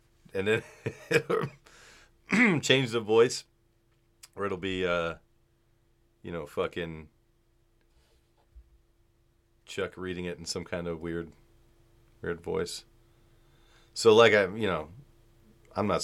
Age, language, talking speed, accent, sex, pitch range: 40-59, English, 110 wpm, American, male, 90-115 Hz